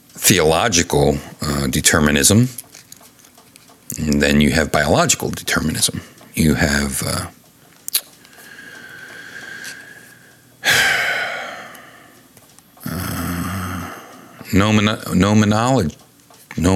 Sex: male